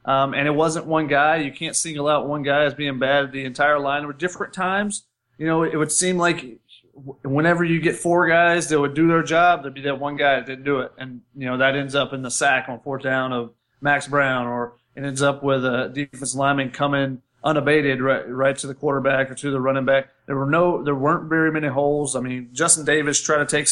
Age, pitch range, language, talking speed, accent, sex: 30-49, 135-155 Hz, English, 245 wpm, American, male